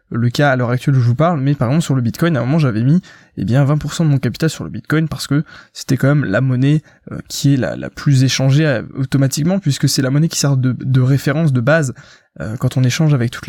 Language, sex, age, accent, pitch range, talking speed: French, male, 20-39, French, 130-160 Hz, 275 wpm